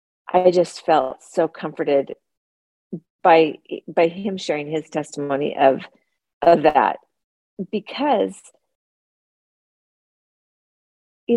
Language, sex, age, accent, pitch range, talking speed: English, female, 40-59, American, 160-200 Hz, 85 wpm